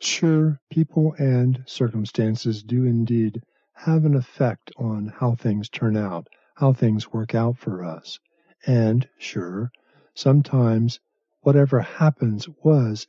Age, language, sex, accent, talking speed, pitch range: 50-69, English, male, American, 120 wpm, 115-145 Hz